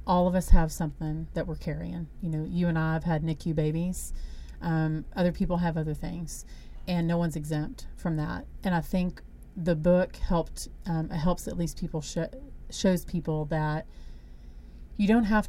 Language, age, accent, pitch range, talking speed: English, 30-49, American, 155-175 Hz, 185 wpm